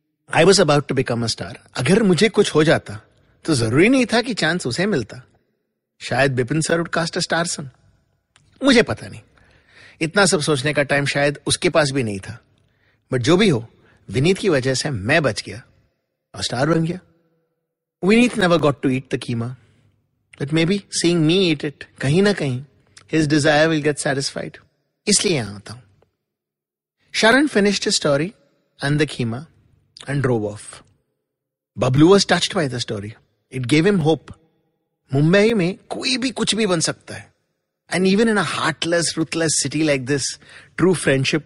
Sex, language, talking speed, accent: male, English, 165 wpm, Indian